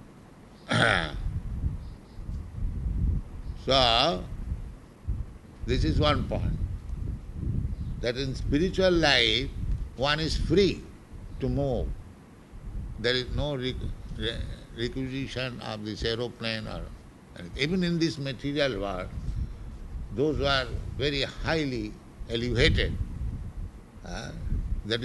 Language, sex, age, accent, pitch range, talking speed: English, male, 60-79, Indian, 95-145 Hz, 90 wpm